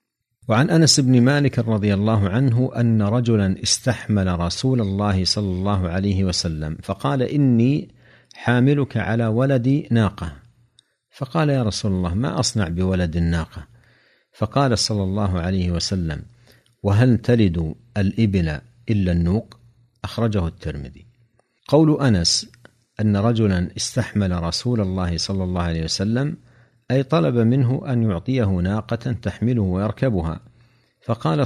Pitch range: 95-125 Hz